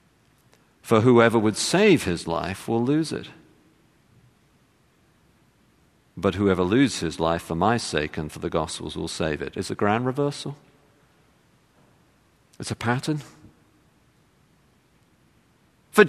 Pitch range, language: 95-145 Hz, English